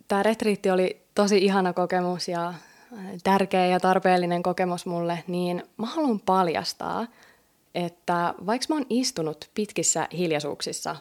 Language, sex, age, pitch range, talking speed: Finnish, female, 20-39, 170-200 Hz, 125 wpm